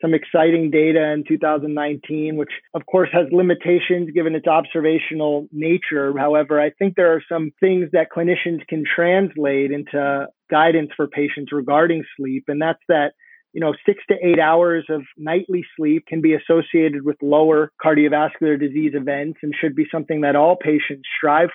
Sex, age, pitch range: male, 30-49, 145-165 Hz